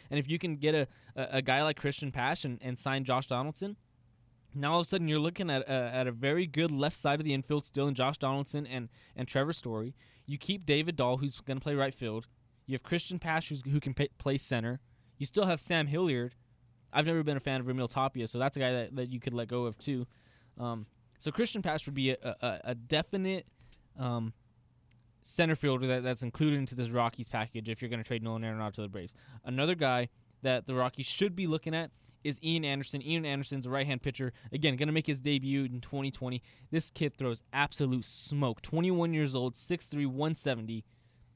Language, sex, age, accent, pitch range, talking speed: English, male, 10-29, American, 120-145 Hz, 220 wpm